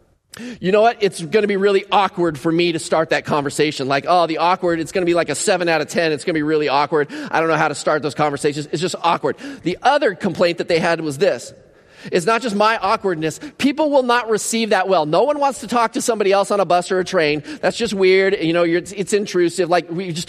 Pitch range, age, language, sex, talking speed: 150-185 Hz, 30-49, English, male, 265 wpm